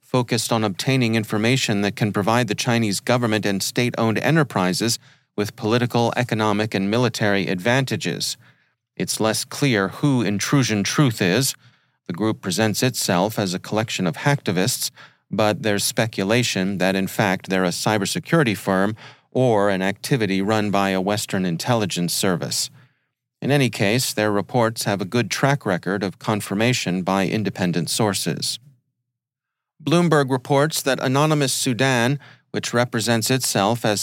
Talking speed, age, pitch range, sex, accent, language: 140 wpm, 40-59, 105-130 Hz, male, American, English